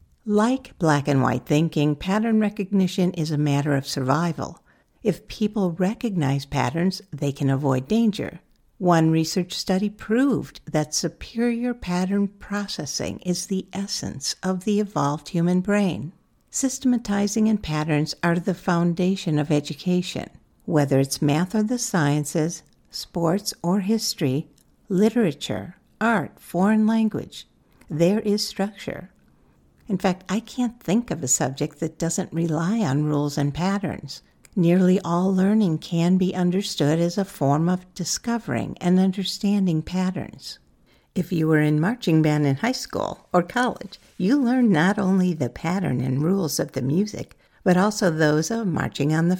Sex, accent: female, American